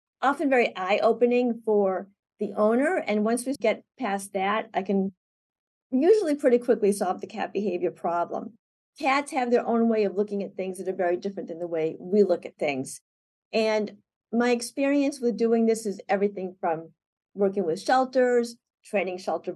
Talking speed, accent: 170 wpm, American